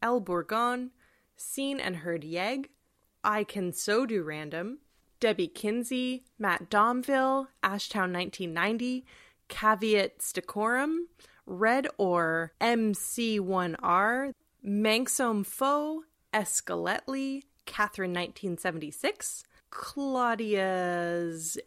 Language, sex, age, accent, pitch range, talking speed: English, female, 20-39, American, 195-265 Hz, 70 wpm